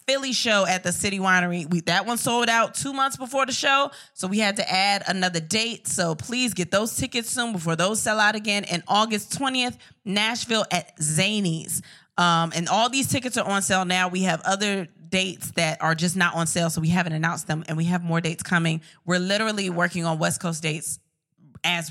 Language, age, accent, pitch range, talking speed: English, 20-39, American, 165-210 Hz, 210 wpm